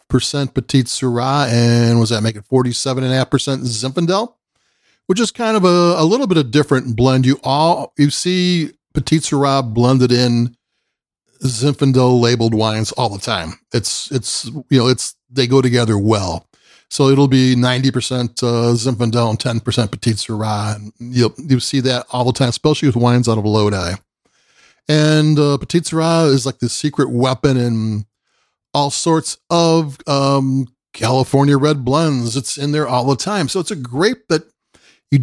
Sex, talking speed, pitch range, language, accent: male, 165 wpm, 120-150 Hz, English, American